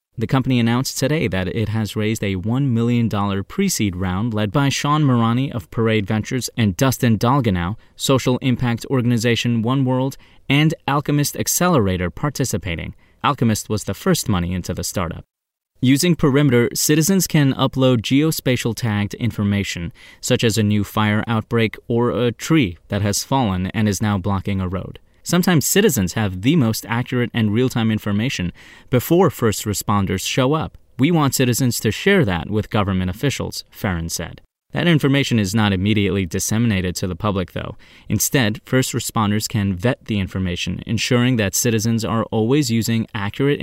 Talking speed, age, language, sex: 155 wpm, 30-49, English, male